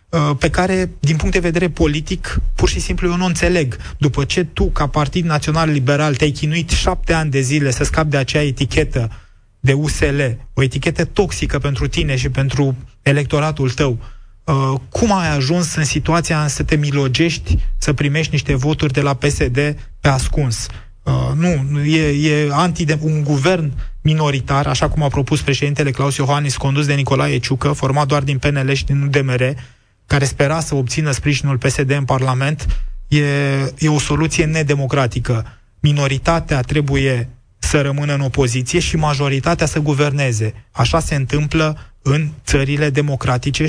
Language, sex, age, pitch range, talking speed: Romanian, male, 20-39, 135-155 Hz, 160 wpm